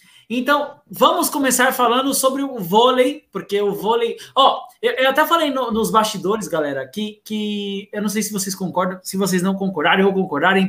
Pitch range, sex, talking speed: 195-235 Hz, male, 190 wpm